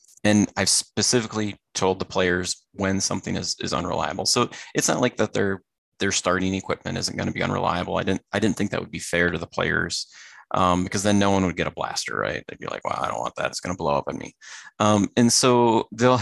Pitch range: 90-110 Hz